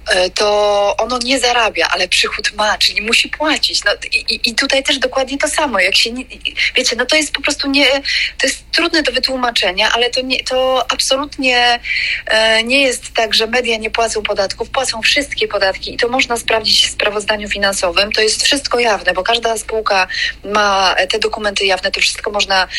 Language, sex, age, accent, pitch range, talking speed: Polish, female, 30-49, native, 200-260 Hz, 185 wpm